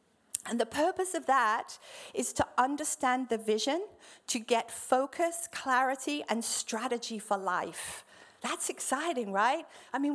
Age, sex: 50-69, female